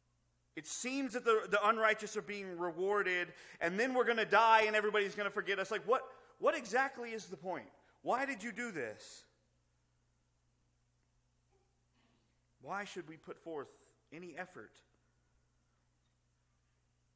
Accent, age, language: American, 30-49, English